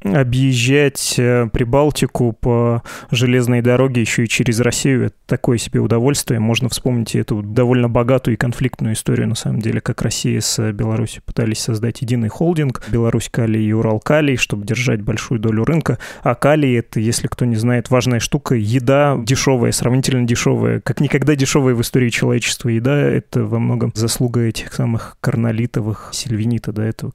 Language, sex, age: Russian, male, 20-39